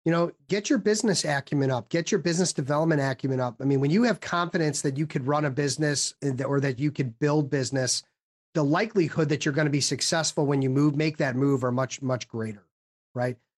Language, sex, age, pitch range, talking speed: English, male, 40-59, 140-170 Hz, 220 wpm